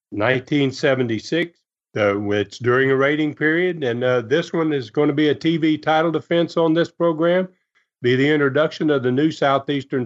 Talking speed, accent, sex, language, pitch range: 175 wpm, American, male, English, 115-155 Hz